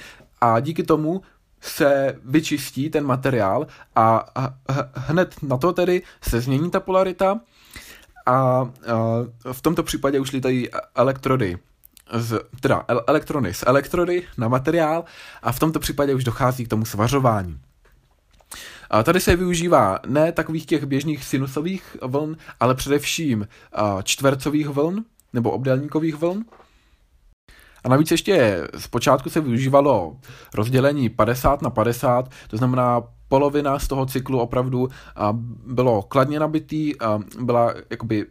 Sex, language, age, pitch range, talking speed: male, Czech, 20-39, 120-150 Hz, 120 wpm